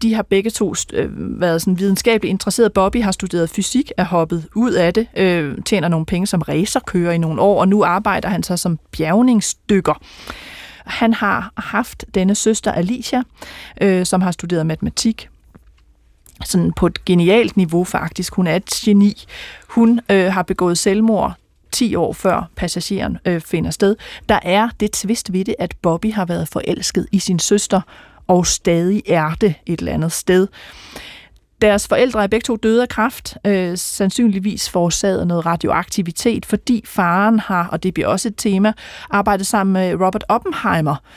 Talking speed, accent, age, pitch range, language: 165 wpm, native, 30-49, 175-215 Hz, Danish